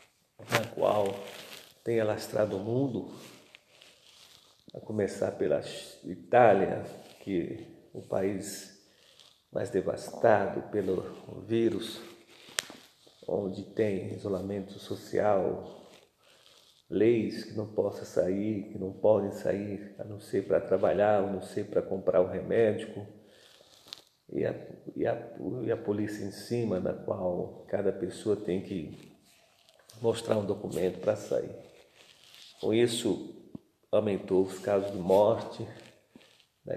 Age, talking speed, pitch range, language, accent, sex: 50-69, 115 wpm, 95-115 Hz, Portuguese, Brazilian, male